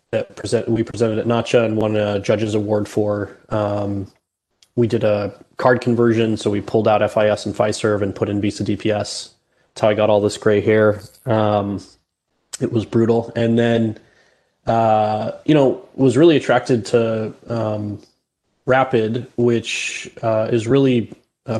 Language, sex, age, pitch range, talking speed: English, male, 20-39, 105-120 Hz, 160 wpm